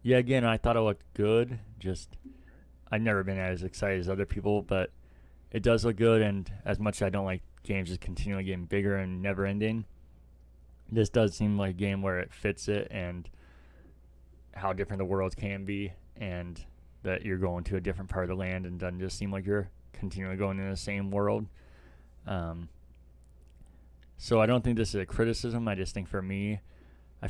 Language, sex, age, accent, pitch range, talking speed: English, male, 20-39, American, 85-100 Hz, 200 wpm